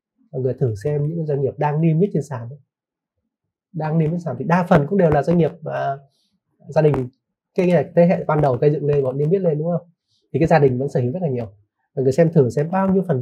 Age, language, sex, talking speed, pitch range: 30-49, Vietnamese, male, 270 wpm, 130-170 Hz